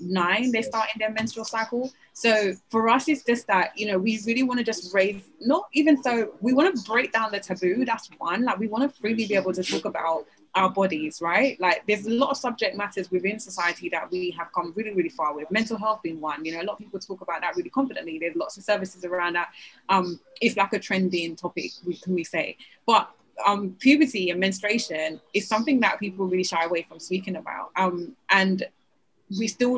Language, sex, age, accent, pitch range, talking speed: English, female, 20-39, British, 185-245 Hz, 230 wpm